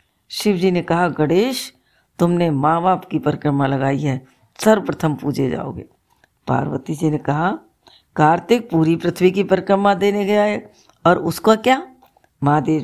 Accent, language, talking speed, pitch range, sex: native, Hindi, 135 wpm, 150-190 Hz, female